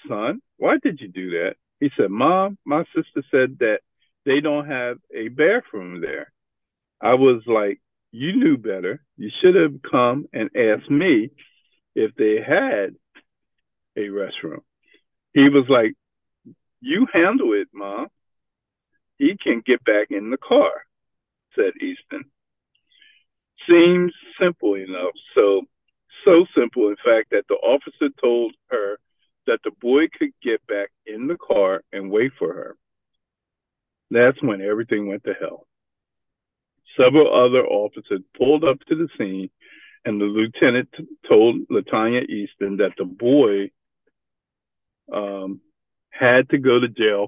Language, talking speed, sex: English, 135 wpm, male